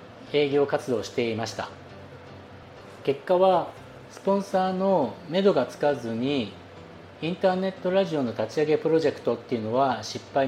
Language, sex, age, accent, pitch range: Japanese, male, 40-59, native, 120-165 Hz